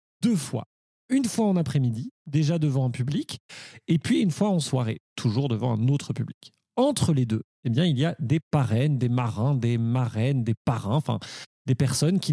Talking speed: 195 wpm